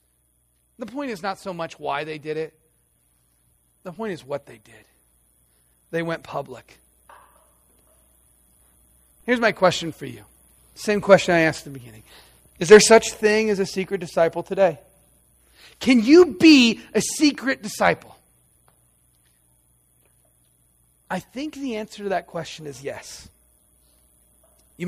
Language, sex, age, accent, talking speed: English, male, 40-59, American, 135 wpm